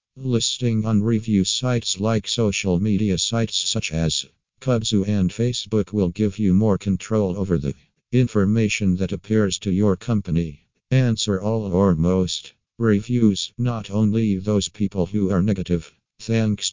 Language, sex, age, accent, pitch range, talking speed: English, male, 50-69, American, 95-110 Hz, 140 wpm